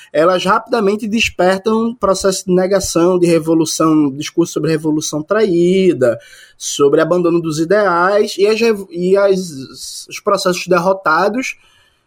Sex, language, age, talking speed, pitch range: male, Portuguese, 20-39, 110 wpm, 165-220 Hz